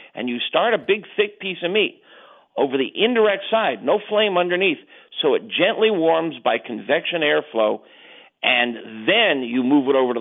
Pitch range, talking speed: 125-205 Hz, 175 wpm